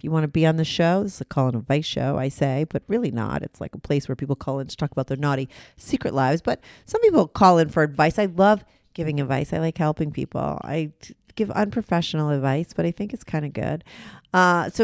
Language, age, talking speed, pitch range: English, 40-59, 255 wpm, 145-190 Hz